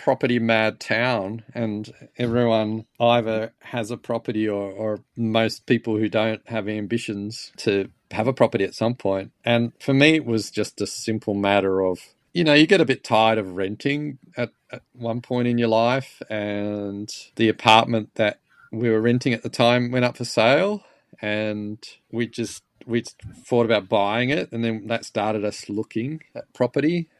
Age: 40-59